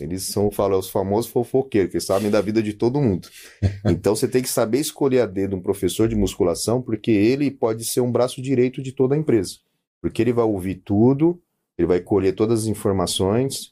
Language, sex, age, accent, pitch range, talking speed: Portuguese, male, 30-49, Brazilian, 95-125 Hz, 205 wpm